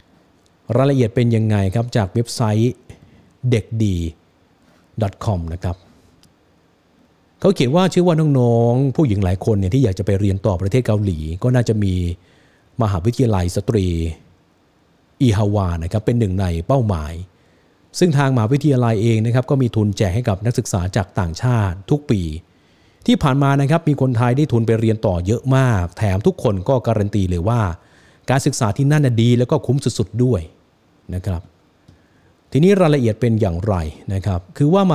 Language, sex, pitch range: Thai, male, 95-125 Hz